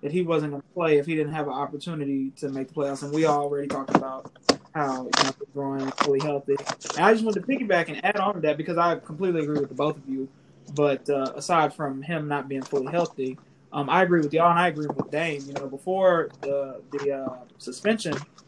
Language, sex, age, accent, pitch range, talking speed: English, male, 20-39, American, 145-180 Hz, 240 wpm